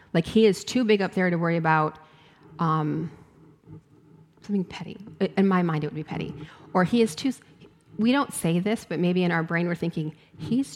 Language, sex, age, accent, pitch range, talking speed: English, female, 40-59, American, 160-195 Hz, 200 wpm